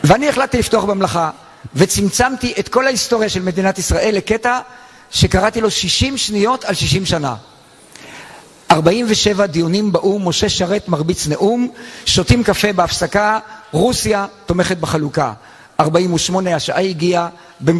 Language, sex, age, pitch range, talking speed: Hebrew, male, 50-69, 165-210 Hz, 120 wpm